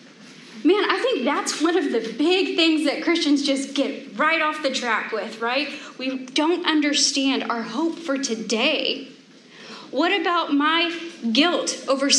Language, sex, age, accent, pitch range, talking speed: English, female, 30-49, American, 250-335 Hz, 155 wpm